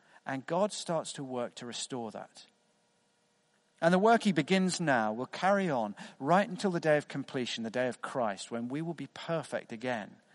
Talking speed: 190 wpm